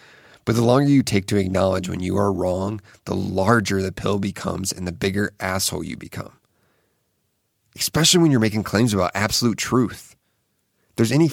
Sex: male